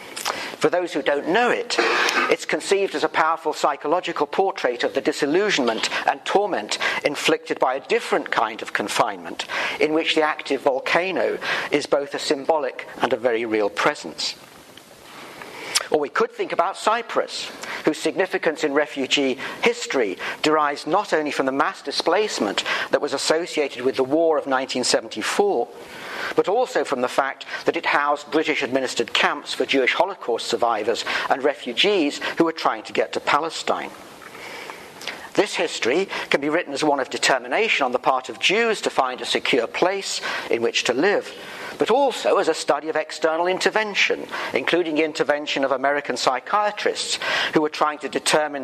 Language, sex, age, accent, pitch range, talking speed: English, male, 50-69, British, 145-220 Hz, 160 wpm